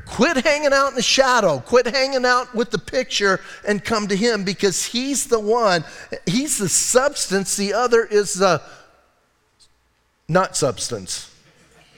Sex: male